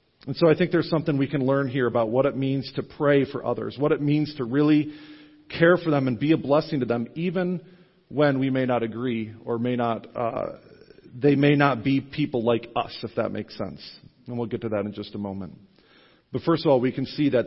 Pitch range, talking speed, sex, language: 120-150 Hz, 240 wpm, male, English